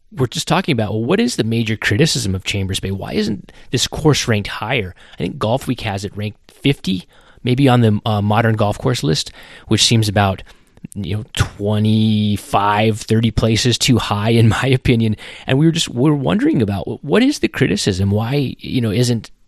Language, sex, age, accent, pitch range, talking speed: English, male, 30-49, American, 105-115 Hz, 200 wpm